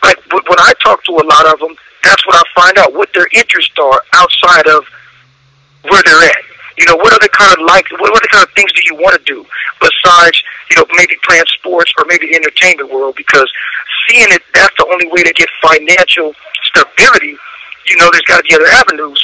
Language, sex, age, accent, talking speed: English, male, 50-69, American, 220 wpm